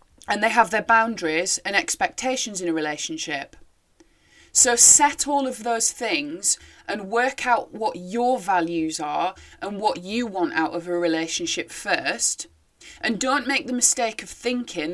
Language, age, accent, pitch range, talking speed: English, 20-39, British, 165-235 Hz, 155 wpm